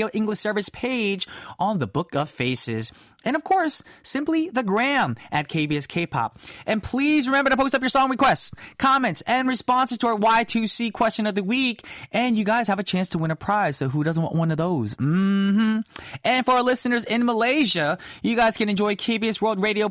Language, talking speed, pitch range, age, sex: English, 200 wpm, 165-240 Hz, 20-39, male